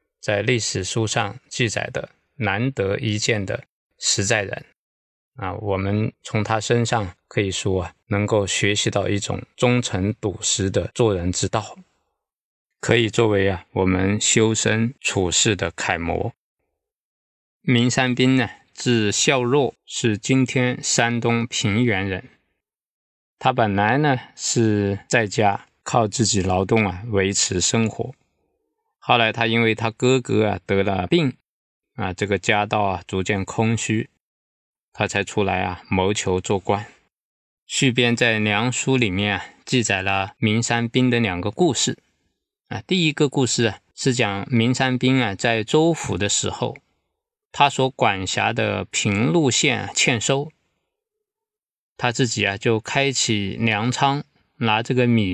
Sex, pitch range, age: male, 100-125 Hz, 20-39